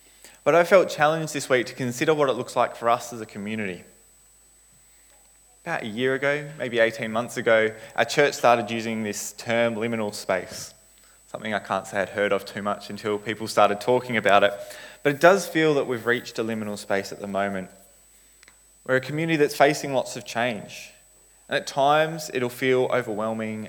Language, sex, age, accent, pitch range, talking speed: English, male, 20-39, Australian, 110-145 Hz, 190 wpm